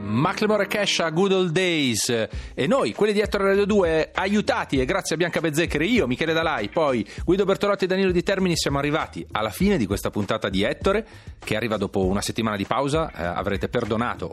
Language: Italian